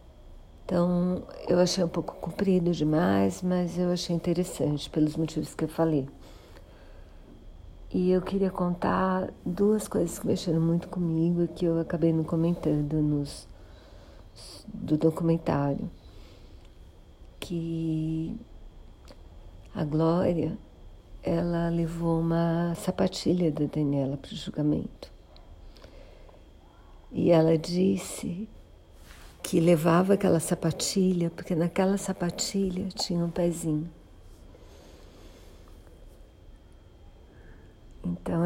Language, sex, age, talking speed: Portuguese, female, 50-69, 95 wpm